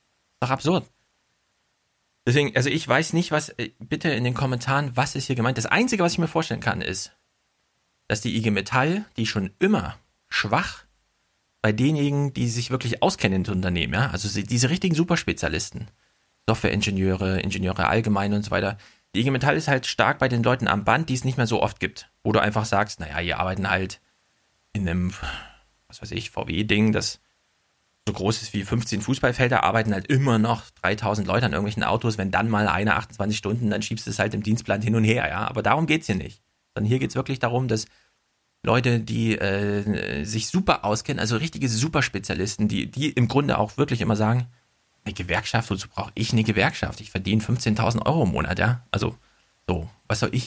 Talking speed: 195 wpm